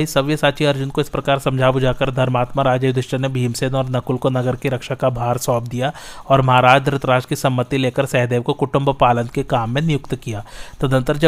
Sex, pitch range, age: male, 125-140 Hz, 30-49